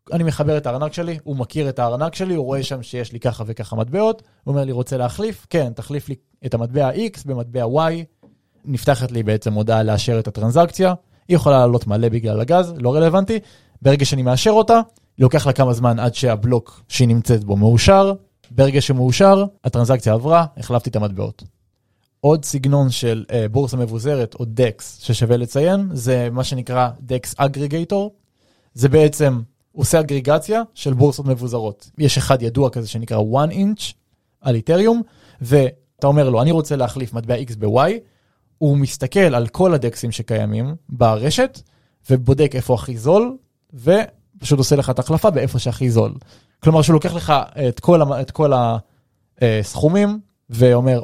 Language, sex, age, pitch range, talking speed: Hebrew, male, 20-39, 120-155 Hz, 160 wpm